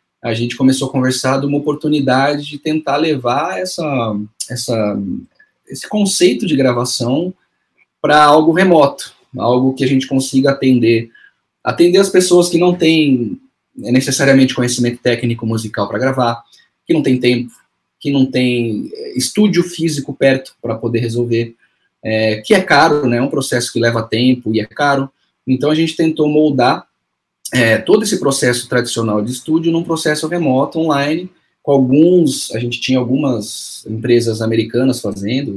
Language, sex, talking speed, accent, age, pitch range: Portuguese, male, 150 wpm, Brazilian, 20-39, 120-155 Hz